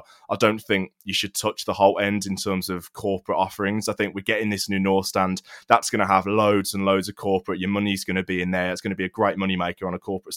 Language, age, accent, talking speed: English, 20-39, British, 285 wpm